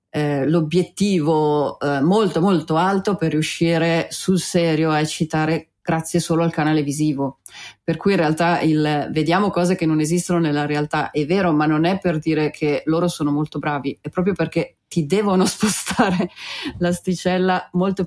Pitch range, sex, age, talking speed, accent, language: 155-185 Hz, female, 30-49, 155 wpm, native, Italian